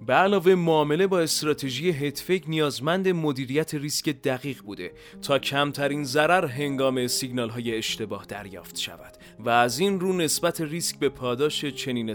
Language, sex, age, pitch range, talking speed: Persian, male, 30-49, 130-180 Hz, 145 wpm